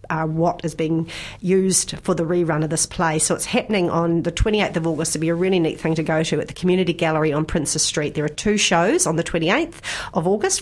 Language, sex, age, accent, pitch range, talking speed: English, female, 40-59, Australian, 160-200 Hz, 250 wpm